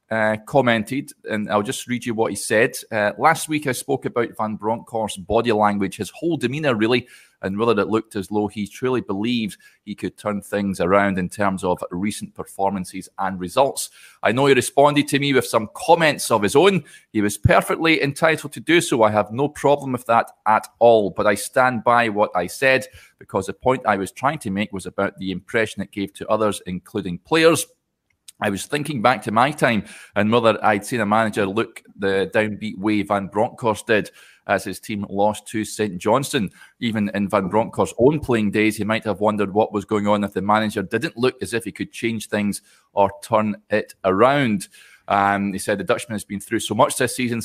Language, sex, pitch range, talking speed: English, male, 100-120 Hz, 210 wpm